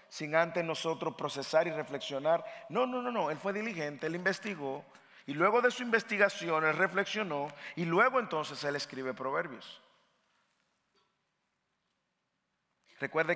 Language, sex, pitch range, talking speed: English, male, 150-210 Hz, 130 wpm